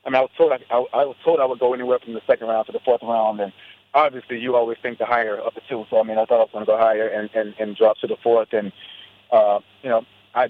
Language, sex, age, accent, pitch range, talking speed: English, male, 30-49, American, 110-145 Hz, 315 wpm